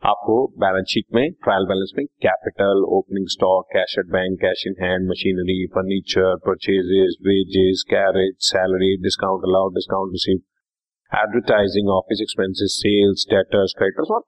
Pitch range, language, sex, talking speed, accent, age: 95-150 Hz, Hindi, male, 120 wpm, native, 40-59